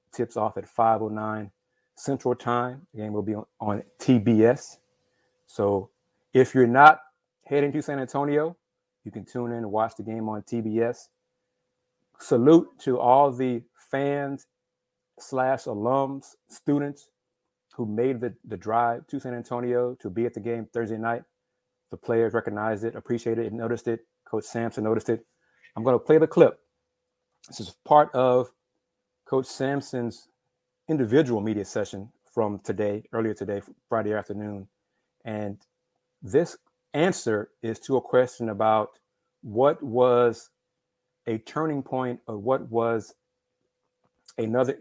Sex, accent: male, American